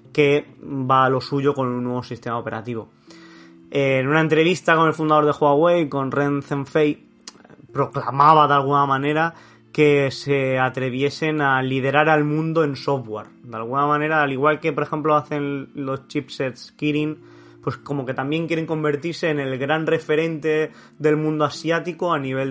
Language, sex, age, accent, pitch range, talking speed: Spanish, male, 20-39, Spanish, 130-160 Hz, 165 wpm